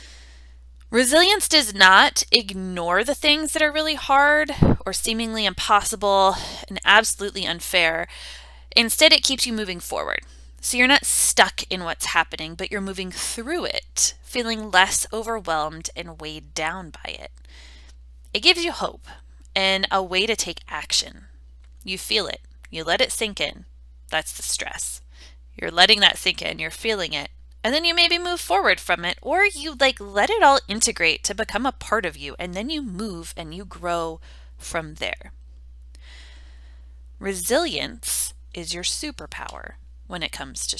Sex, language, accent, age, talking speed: female, English, American, 20-39, 160 wpm